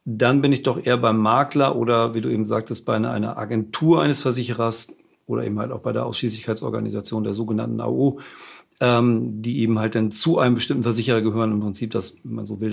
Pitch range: 110-130 Hz